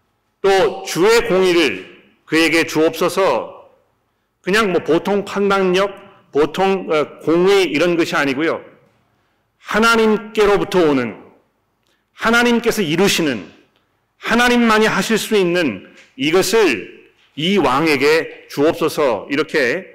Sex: male